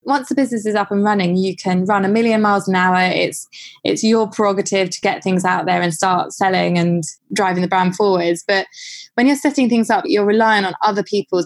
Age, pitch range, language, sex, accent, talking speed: 20-39, 180-205 Hz, English, female, British, 225 wpm